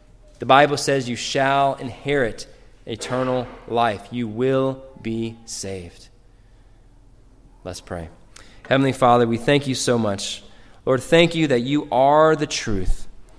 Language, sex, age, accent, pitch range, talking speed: English, male, 20-39, American, 110-140 Hz, 130 wpm